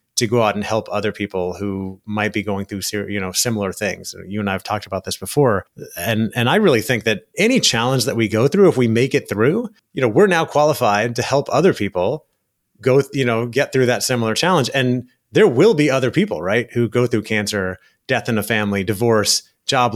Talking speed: 225 wpm